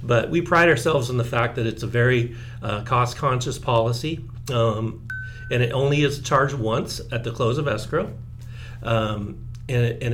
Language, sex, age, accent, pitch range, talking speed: English, male, 40-59, American, 115-135 Hz, 180 wpm